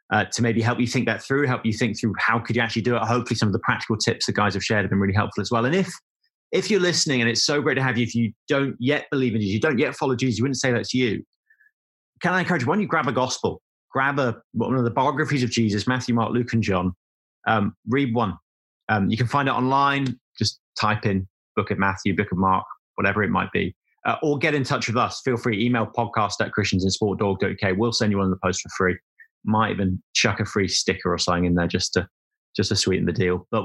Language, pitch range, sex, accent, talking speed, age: English, 105-135 Hz, male, British, 260 wpm, 30-49